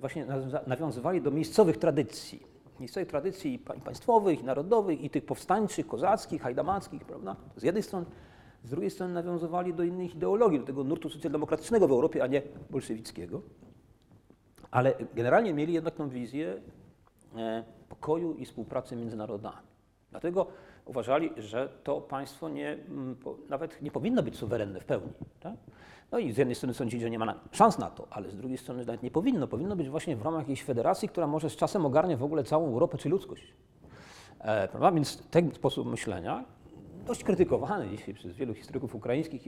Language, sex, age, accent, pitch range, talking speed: Polish, male, 40-59, native, 120-160 Hz, 165 wpm